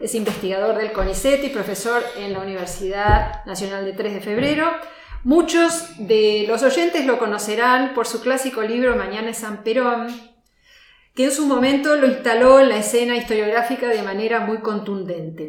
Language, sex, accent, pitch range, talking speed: Spanish, female, Argentinian, 210-265 Hz, 165 wpm